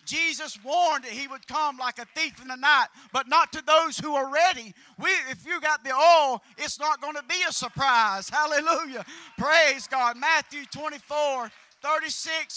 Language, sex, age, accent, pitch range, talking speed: English, male, 40-59, American, 245-325 Hz, 180 wpm